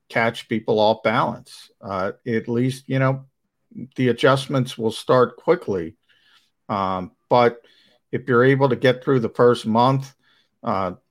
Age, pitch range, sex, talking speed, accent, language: 50-69, 110-130 Hz, male, 140 wpm, American, English